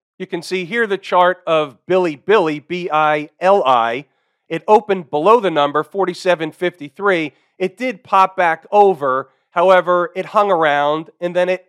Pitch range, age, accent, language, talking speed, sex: 155-195 Hz, 40-59, American, English, 145 wpm, male